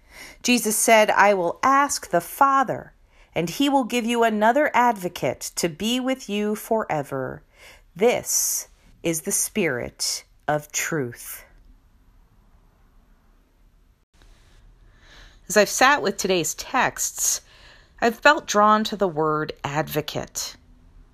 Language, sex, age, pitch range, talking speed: English, female, 40-59, 170-245 Hz, 110 wpm